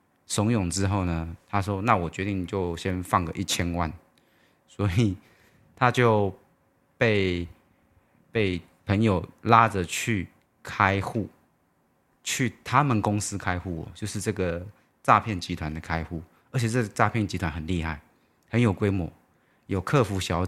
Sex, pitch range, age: male, 85-105 Hz, 30-49